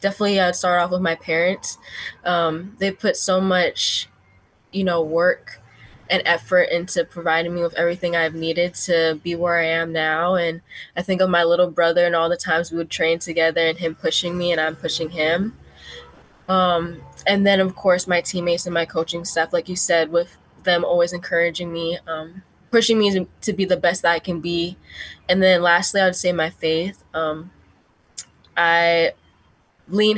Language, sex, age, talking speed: English, female, 20-39, 185 wpm